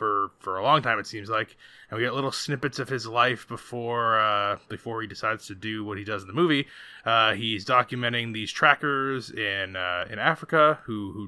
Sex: male